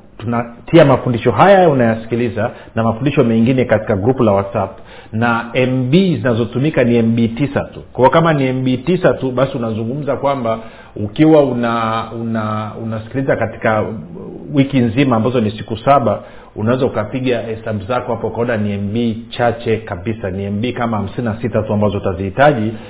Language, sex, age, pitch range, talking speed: Swahili, male, 40-59, 110-135 Hz, 145 wpm